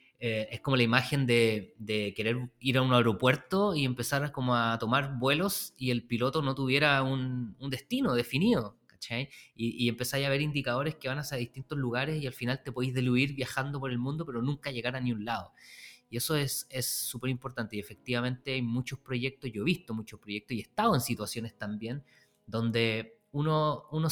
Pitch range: 115-150 Hz